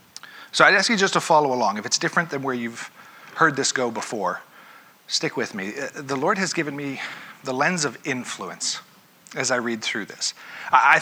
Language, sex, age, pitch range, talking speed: English, male, 40-59, 130-180 Hz, 195 wpm